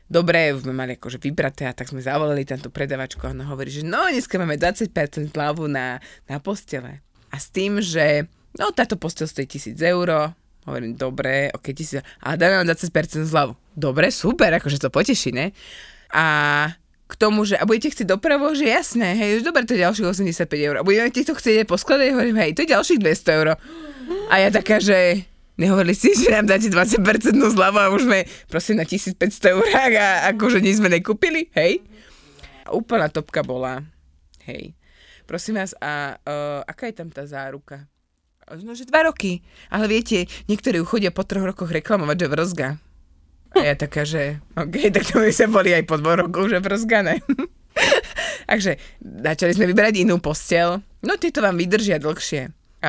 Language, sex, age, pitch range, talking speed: Slovak, female, 20-39, 145-210 Hz, 180 wpm